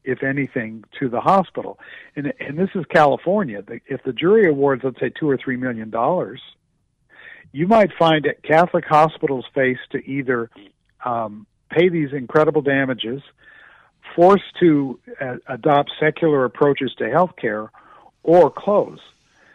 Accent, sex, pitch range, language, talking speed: American, male, 125-155 Hz, English, 140 wpm